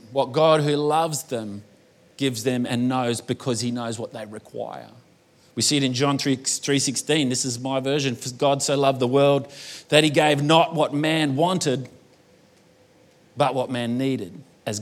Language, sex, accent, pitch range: English, male, Australian, 125-155 Hz